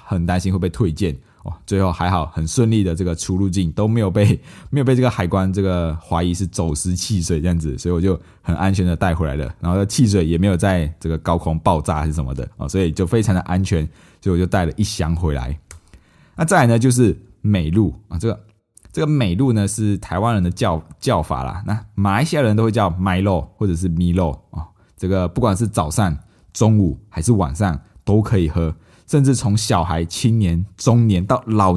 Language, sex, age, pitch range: Chinese, male, 20-39, 85-110 Hz